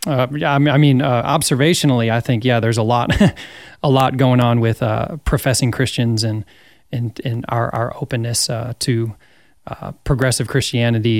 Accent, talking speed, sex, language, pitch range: American, 165 wpm, male, English, 115-140 Hz